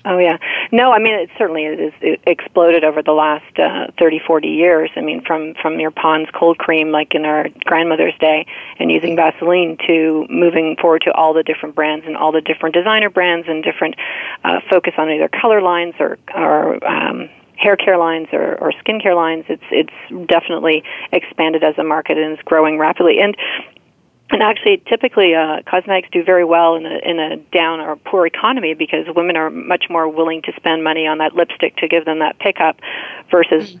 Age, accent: 40-59, American